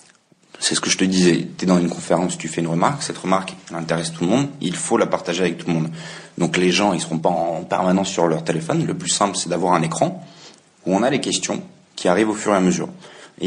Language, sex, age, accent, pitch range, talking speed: French, male, 30-49, French, 85-110 Hz, 270 wpm